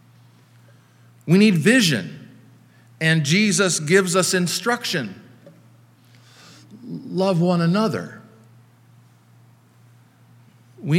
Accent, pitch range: American, 120-160 Hz